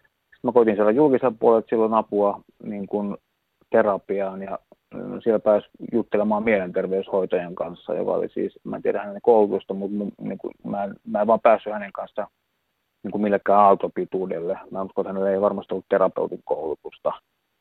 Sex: male